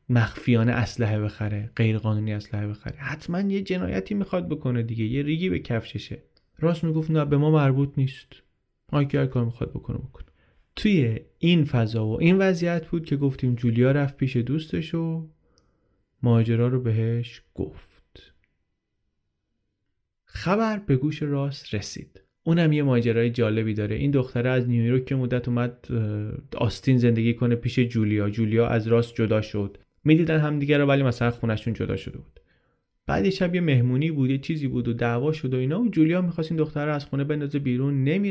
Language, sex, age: Persian, male, 30-49